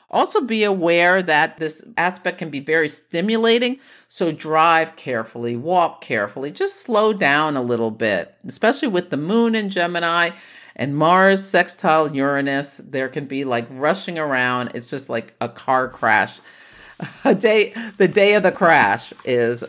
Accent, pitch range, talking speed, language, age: American, 125-190 Hz, 155 wpm, English, 50-69